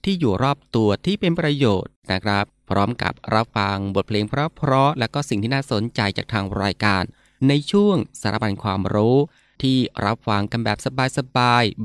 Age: 20-39